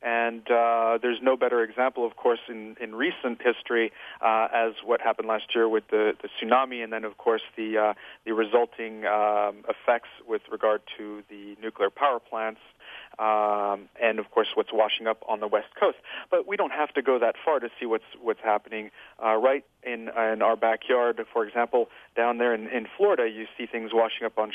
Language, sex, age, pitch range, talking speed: English, male, 40-59, 110-135 Hz, 200 wpm